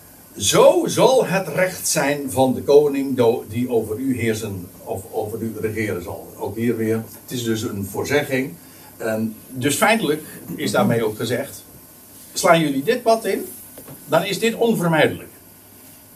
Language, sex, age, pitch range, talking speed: Dutch, male, 60-79, 130-215 Hz, 150 wpm